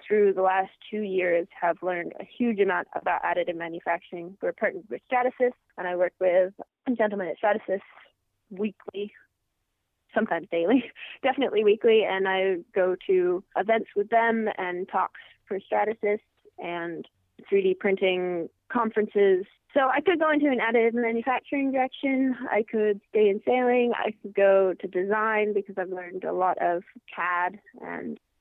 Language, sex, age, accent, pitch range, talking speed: English, female, 20-39, American, 190-245 Hz, 150 wpm